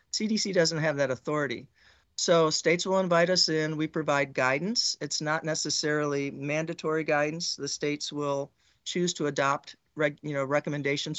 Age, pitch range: 40-59, 145-170 Hz